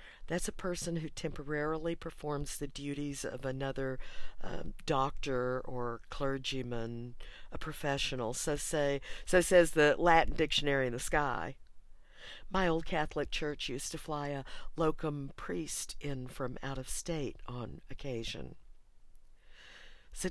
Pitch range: 135-165 Hz